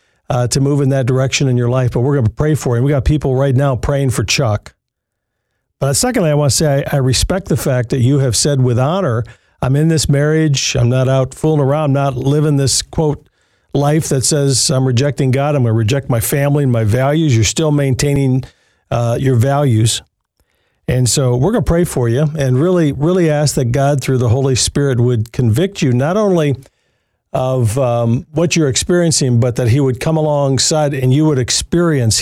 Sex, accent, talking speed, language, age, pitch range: male, American, 215 wpm, English, 50-69, 120-150 Hz